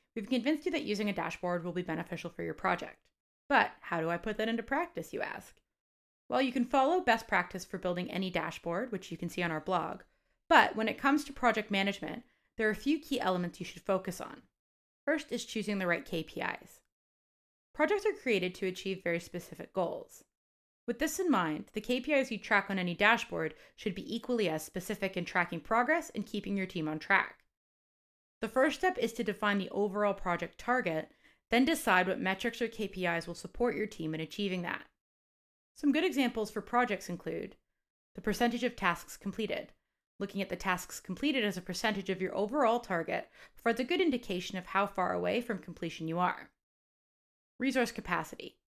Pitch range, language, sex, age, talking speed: 180-240 Hz, English, female, 30-49, 190 wpm